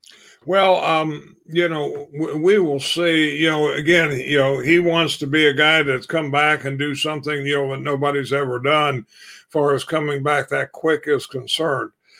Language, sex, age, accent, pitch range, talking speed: English, male, 50-69, American, 140-165 Hz, 185 wpm